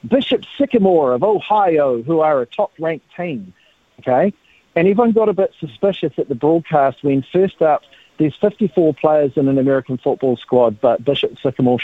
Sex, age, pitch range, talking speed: male, 50-69, 140-185 Hz, 165 wpm